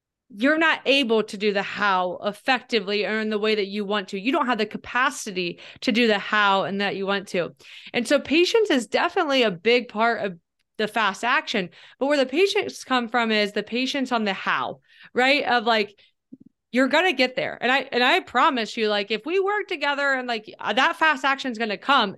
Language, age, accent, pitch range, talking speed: English, 30-49, American, 215-275 Hz, 215 wpm